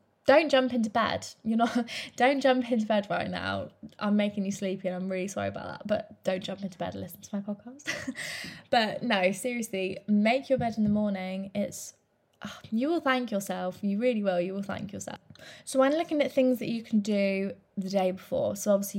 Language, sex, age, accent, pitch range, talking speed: English, female, 20-39, British, 200-250 Hz, 220 wpm